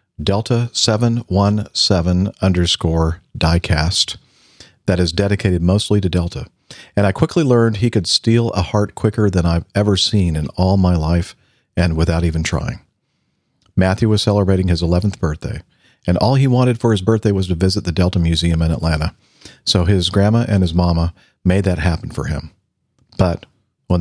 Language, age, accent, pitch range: English, 50-69, American, 85-105 Hz